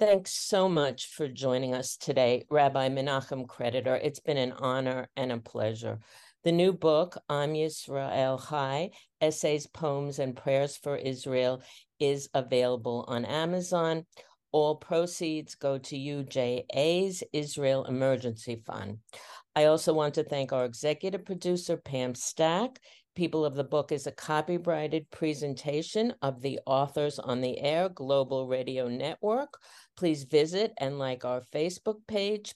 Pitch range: 130-160 Hz